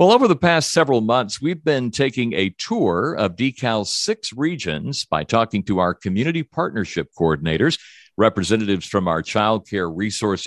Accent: American